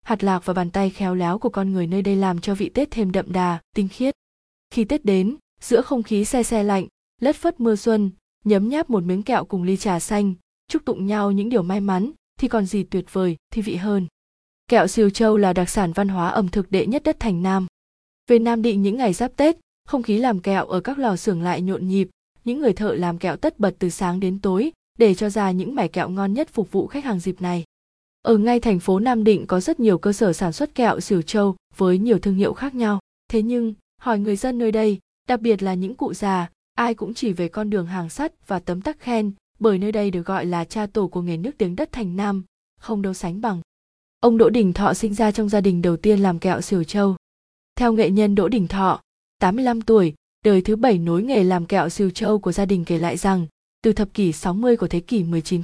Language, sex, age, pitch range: Vietnamese, female, 20-39, 185-230 Hz